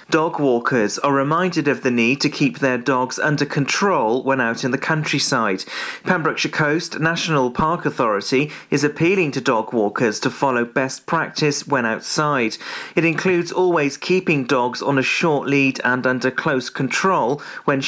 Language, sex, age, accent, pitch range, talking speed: English, male, 40-59, British, 130-160 Hz, 160 wpm